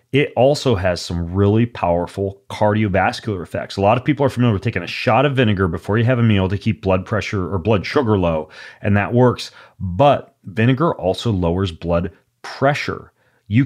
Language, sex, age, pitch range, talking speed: English, male, 30-49, 95-120 Hz, 190 wpm